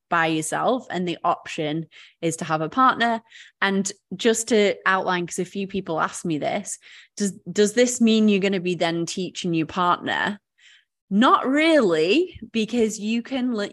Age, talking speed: 20-39, 170 wpm